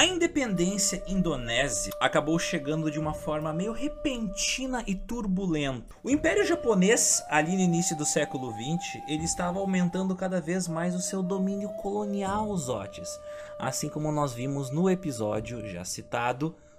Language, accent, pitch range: Portuguese, Brazilian, 145-205 Hz